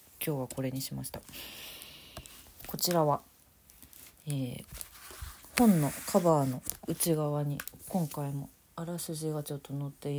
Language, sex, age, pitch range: Japanese, female, 40-59, 155-205 Hz